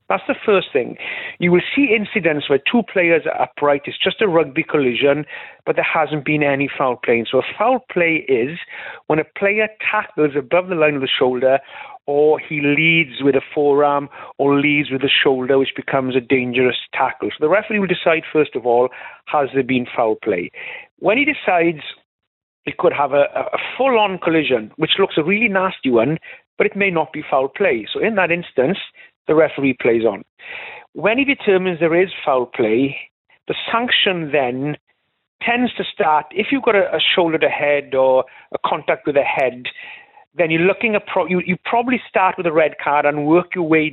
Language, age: English, 50-69